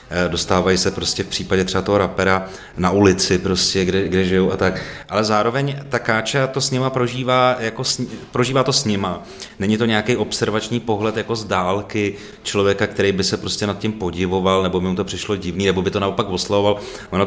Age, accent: 30-49, native